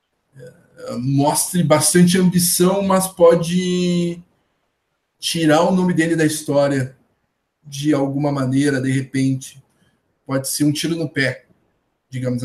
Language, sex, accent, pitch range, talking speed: Portuguese, male, Brazilian, 130-165 Hz, 110 wpm